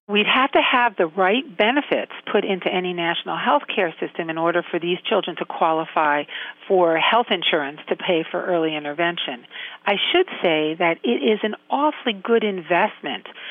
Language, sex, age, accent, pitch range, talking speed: English, female, 50-69, American, 175-250 Hz, 175 wpm